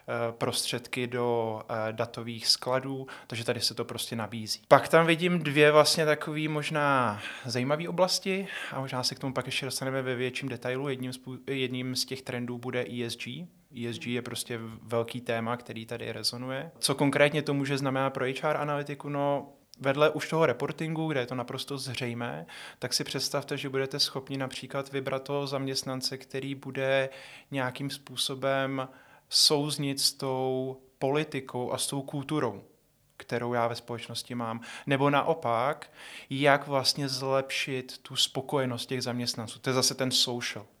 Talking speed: 150 wpm